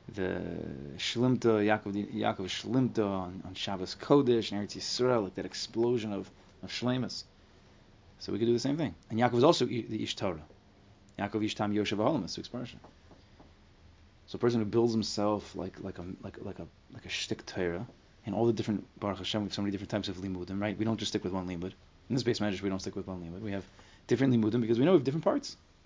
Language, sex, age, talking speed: English, male, 20-39, 225 wpm